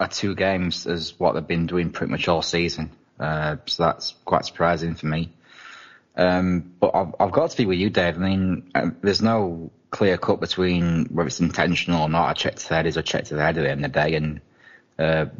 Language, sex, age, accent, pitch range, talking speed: English, male, 20-39, British, 85-95 Hz, 225 wpm